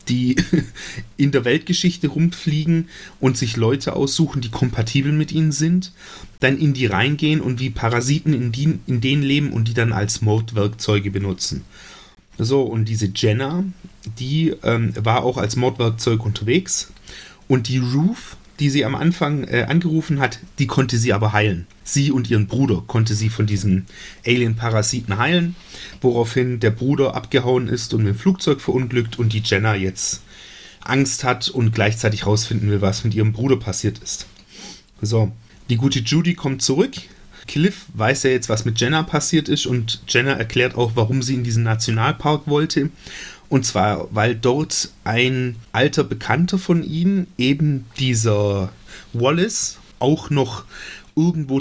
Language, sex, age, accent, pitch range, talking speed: German, male, 30-49, German, 110-140 Hz, 155 wpm